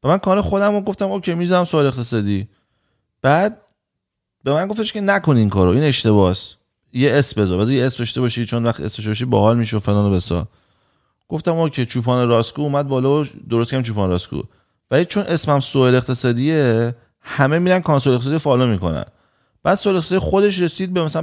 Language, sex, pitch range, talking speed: Persian, male, 115-165 Hz, 180 wpm